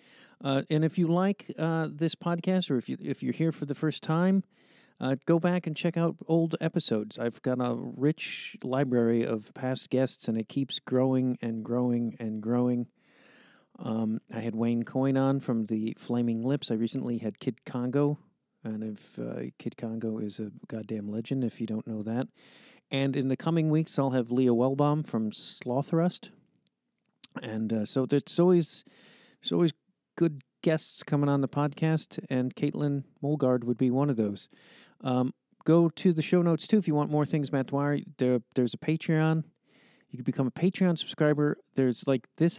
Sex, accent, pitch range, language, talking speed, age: male, American, 125-160 Hz, English, 185 wpm, 50-69